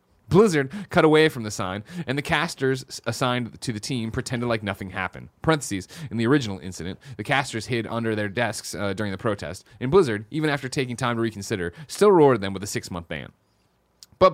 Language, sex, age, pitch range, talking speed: English, male, 30-49, 105-150 Hz, 195 wpm